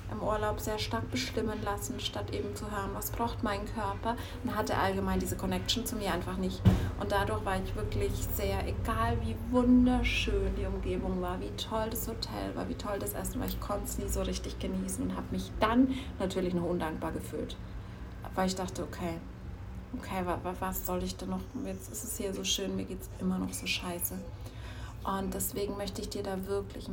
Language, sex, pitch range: German, female, 95-115 Hz